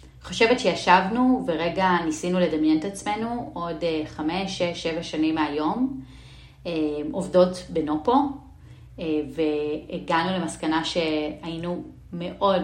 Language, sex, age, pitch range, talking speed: Hebrew, female, 30-49, 150-180 Hz, 90 wpm